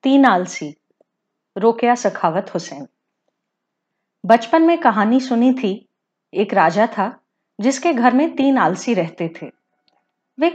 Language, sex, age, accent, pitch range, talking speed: Hindi, female, 30-49, native, 210-310 Hz, 115 wpm